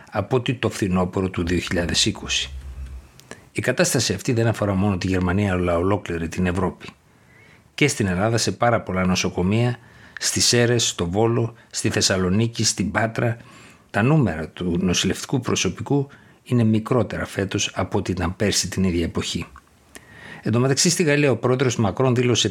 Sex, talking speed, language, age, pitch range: male, 150 wpm, Greek, 60-79, 90-120 Hz